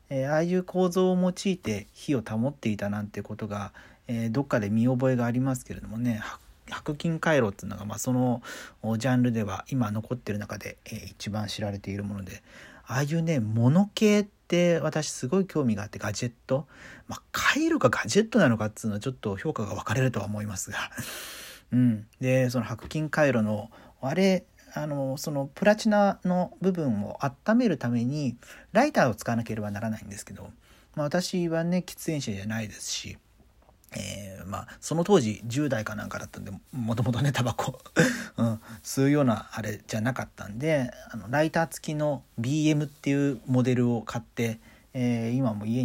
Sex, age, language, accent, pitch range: male, 40-59, Japanese, native, 110-145 Hz